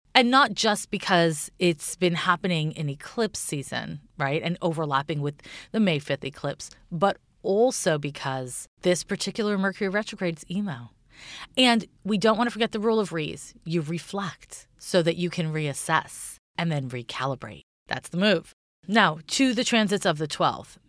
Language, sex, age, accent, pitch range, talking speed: English, female, 30-49, American, 155-210 Hz, 160 wpm